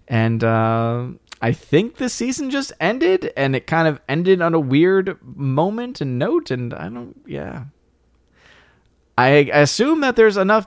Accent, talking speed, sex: American, 155 wpm, male